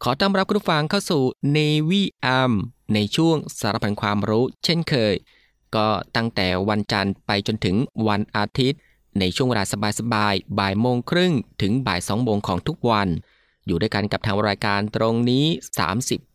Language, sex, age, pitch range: Thai, male, 20-39, 100-135 Hz